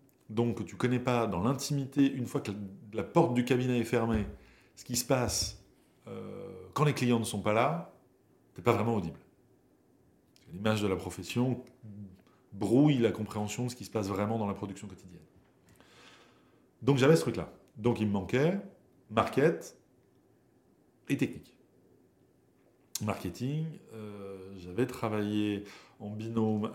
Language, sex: French, male